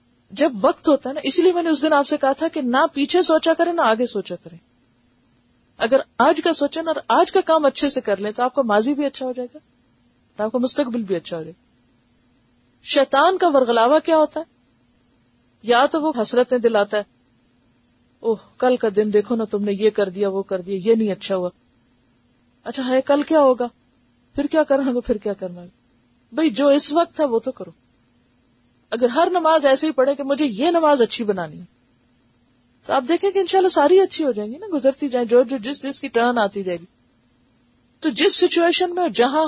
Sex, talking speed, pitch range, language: female, 210 wpm, 190-300 Hz, Urdu